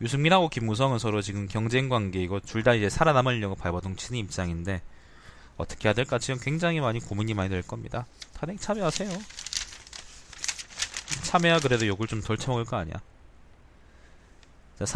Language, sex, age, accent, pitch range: Korean, male, 20-39, native, 85-120 Hz